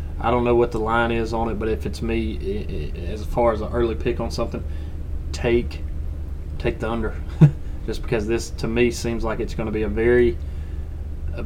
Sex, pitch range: male, 75-120 Hz